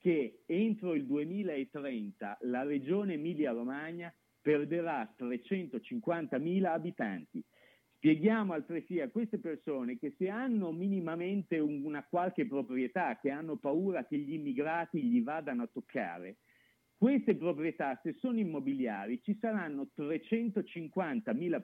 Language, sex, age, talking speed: Italian, male, 50-69, 110 wpm